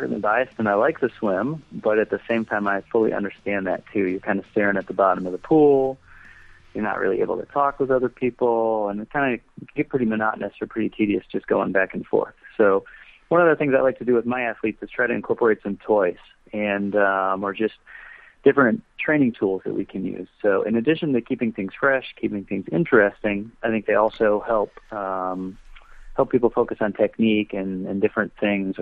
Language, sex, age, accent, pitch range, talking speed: English, male, 30-49, American, 100-125 Hz, 220 wpm